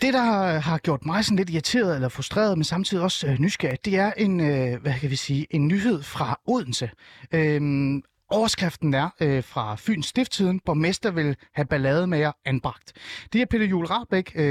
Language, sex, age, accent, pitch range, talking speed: Danish, male, 30-49, native, 140-195 Hz, 160 wpm